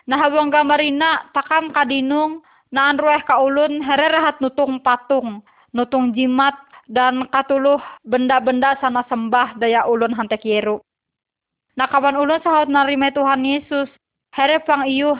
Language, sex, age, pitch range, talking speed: Indonesian, female, 20-39, 245-280 Hz, 130 wpm